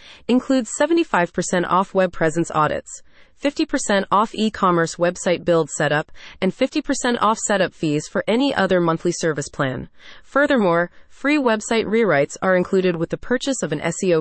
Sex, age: female, 30-49